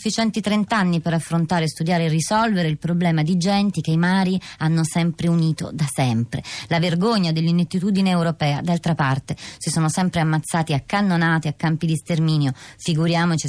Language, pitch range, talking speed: Italian, 155-185 Hz, 160 wpm